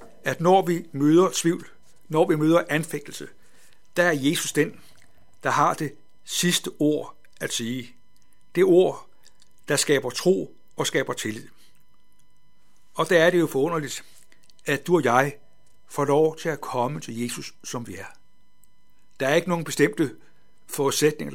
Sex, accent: male, native